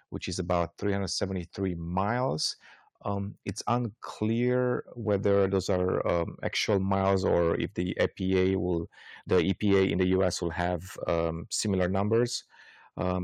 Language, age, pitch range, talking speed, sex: English, 30-49, 90-100 Hz, 135 wpm, male